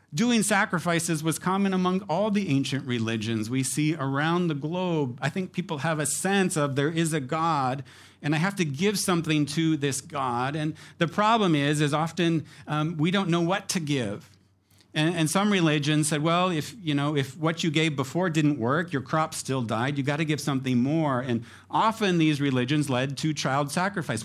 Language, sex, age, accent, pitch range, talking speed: English, male, 50-69, American, 130-170 Hz, 200 wpm